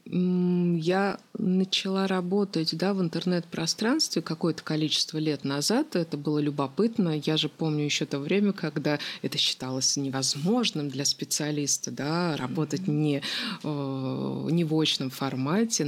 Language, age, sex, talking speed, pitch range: Russian, 30-49, female, 120 wpm, 150-195 Hz